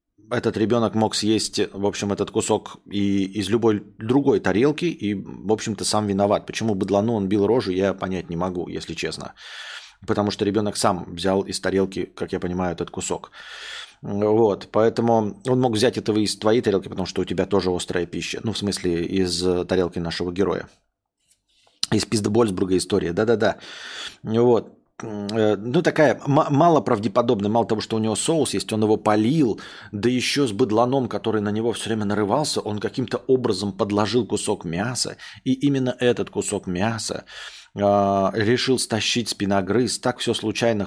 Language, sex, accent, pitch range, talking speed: Russian, male, native, 100-115 Hz, 165 wpm